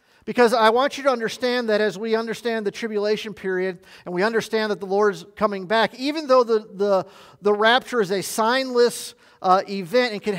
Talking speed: 195 wpm